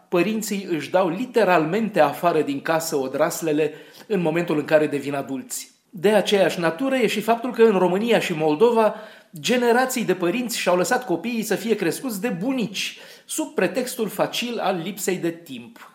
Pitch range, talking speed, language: 150-220 Hz, 160 wpm, Romanian